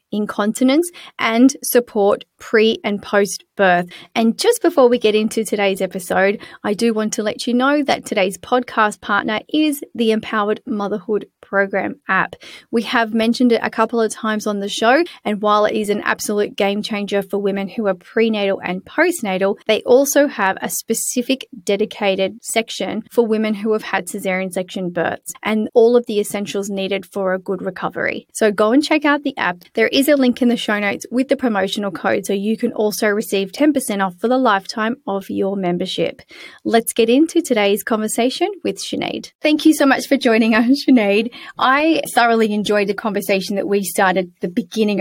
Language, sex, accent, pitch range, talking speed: English, female, Australian, 200-255 Hz, 185 wpm